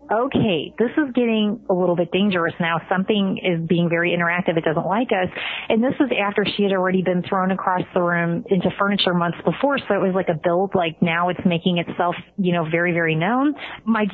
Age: 30-49